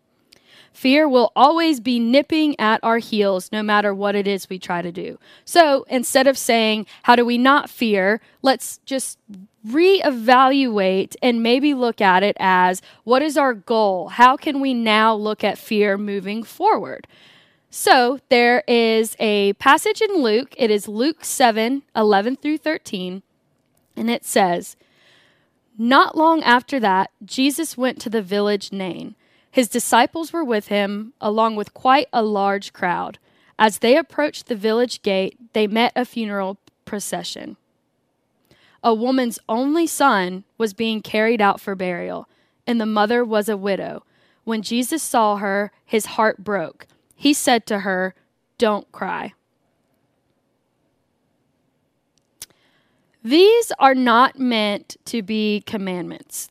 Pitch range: 205-260 Hz